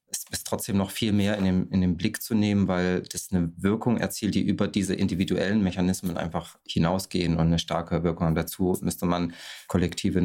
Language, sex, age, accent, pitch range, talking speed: French, male, 30-49, German, 90-100 Hz, 200 wpm